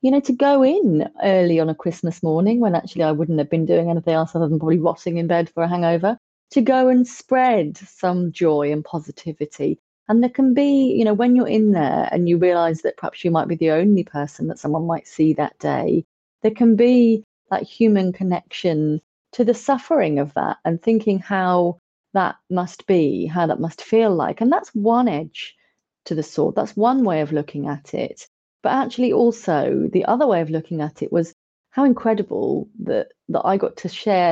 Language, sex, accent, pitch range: English, female, British, 165-220 Hz